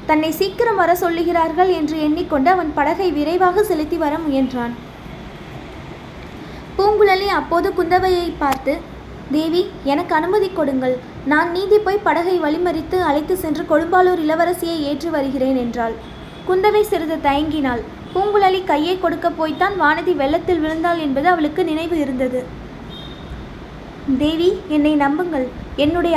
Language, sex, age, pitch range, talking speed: Tamil, female, 20-39, 290-360 Hz, 110 wpm